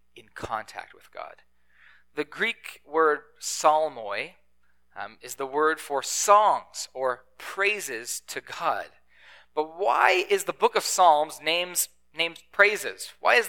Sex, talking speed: male, 125 wpm